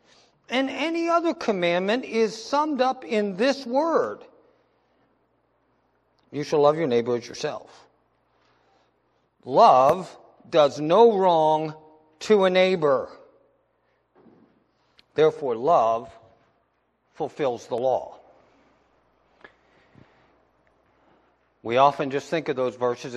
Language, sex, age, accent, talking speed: English, male, 50-69, American, 95 wpm